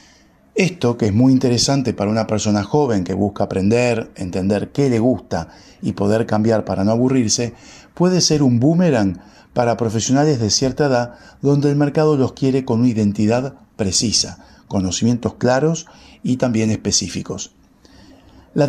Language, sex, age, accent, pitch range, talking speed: Spanish, male, 50-69, Argentinian, 105-140 Hz, 150 wpm